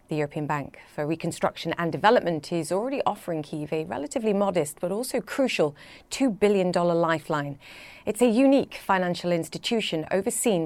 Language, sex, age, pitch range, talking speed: English, female, 30-49, 160-205 Hz, 145 wpm